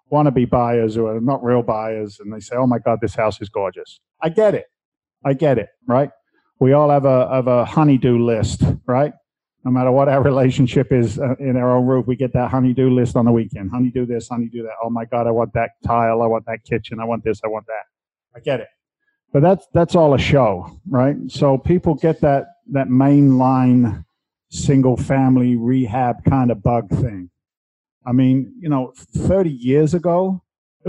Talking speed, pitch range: 210 wpm, 120-150 Hz